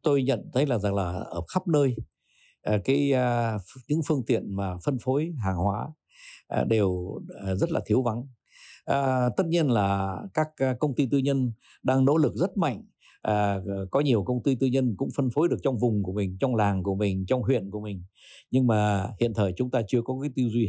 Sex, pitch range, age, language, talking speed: male, 100-140 Hz, 60-79, Vietnamese, 200 wpm